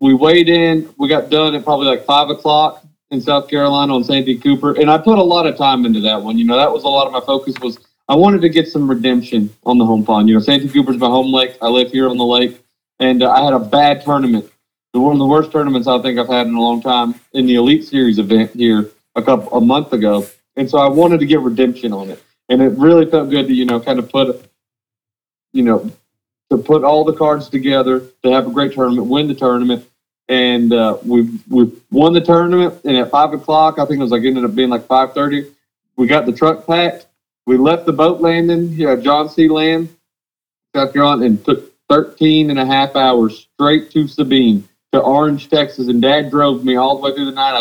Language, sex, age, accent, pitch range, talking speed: English, male, 30-49, American, 125-150 Hz, 235 wpm